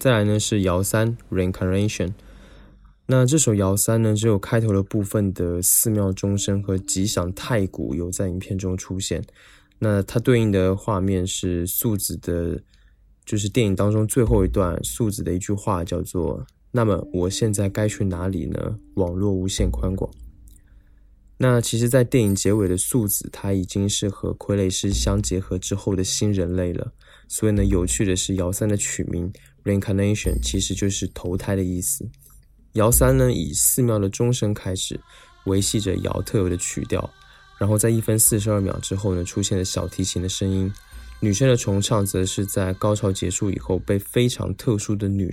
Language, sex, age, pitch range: Chinese, male, 20-39, 95-105 Hz